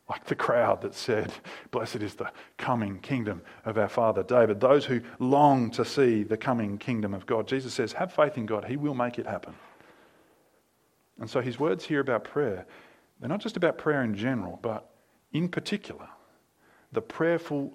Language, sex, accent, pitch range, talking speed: English, male, Australian, 110-145 Hz, 185 wpm